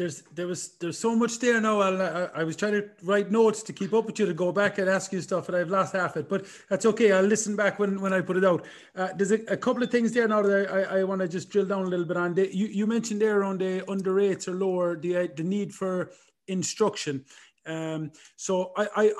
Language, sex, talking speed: English, male, 270 wpm